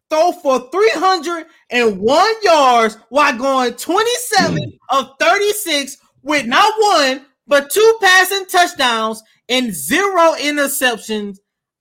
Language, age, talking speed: English, 30-49, 95 wpm